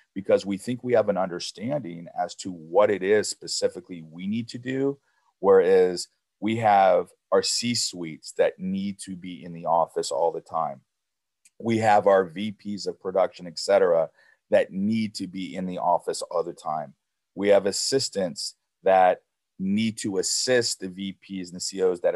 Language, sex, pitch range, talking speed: English, male, 95-120 Hz, 175 wpm